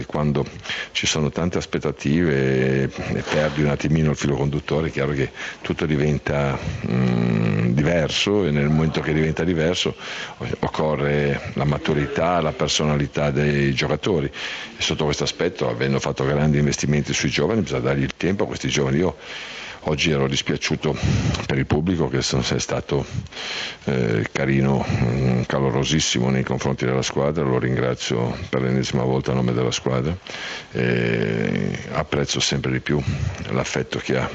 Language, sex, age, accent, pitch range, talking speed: Italian, male, 50-69, native, 65-75 Hz, 145 wpm